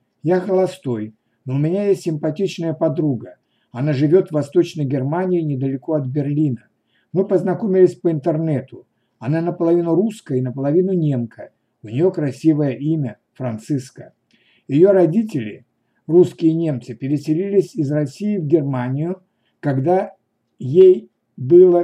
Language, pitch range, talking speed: Russian, 135-175 Hz, 120 wpm